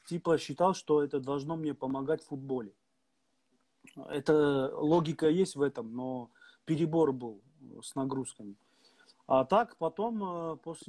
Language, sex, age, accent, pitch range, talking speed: Russian, male, 20-39, native, 125-150 Hz, 125 wpm